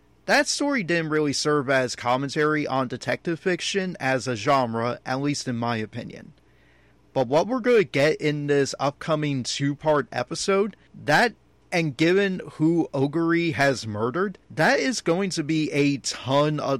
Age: 30-49